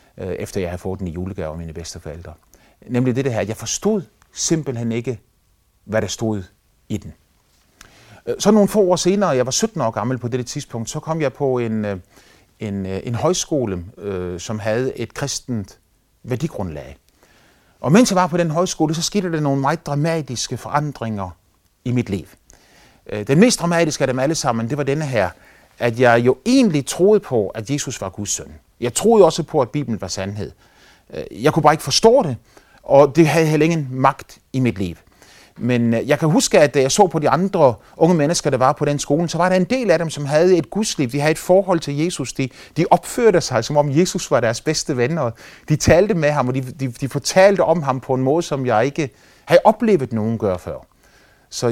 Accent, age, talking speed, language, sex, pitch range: native, 30-49, 205 wpm, Danish, male, 110-160 Hz